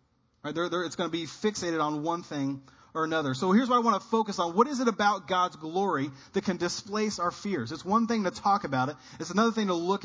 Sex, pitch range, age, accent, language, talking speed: male, 140-195 Hz, 30-49, American, English, 245 wpm